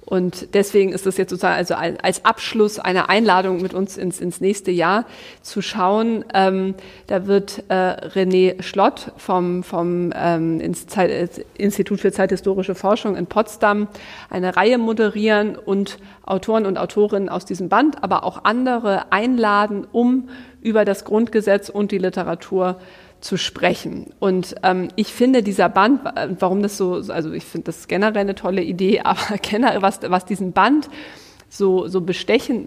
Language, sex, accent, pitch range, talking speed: German, female, German, 185-220 Hz, 160 wpm